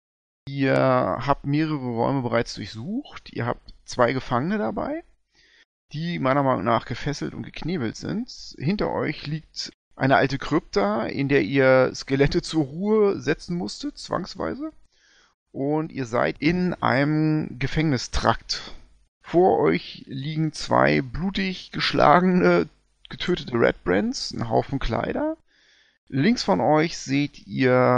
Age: 30-49